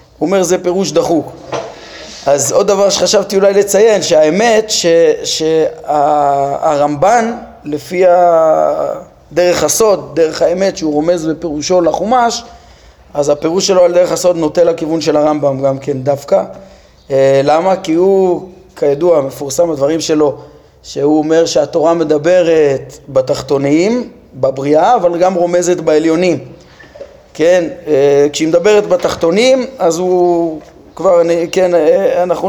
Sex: male